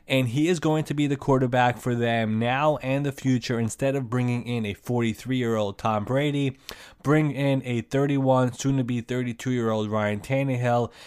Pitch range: 115-135 Hz